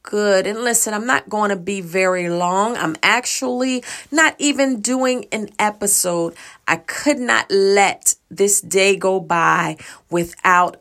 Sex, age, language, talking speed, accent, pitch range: female, 30-49, English, 145 wpm, American, 175-235 Hz